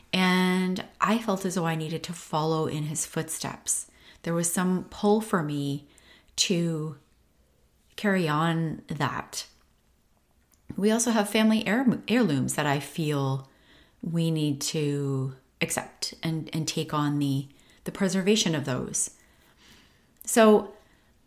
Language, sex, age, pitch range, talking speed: English, female, 30-49, 155-210 Hz, 125 wpm